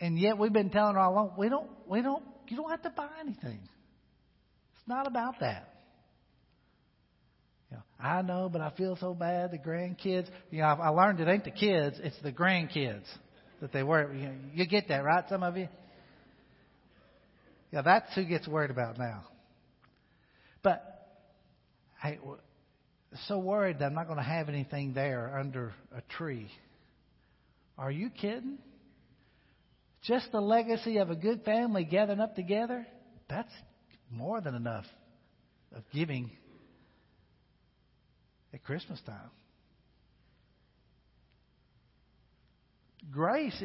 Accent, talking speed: American, 140 wpm